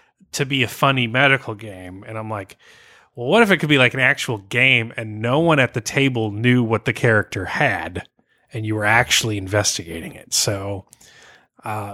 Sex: male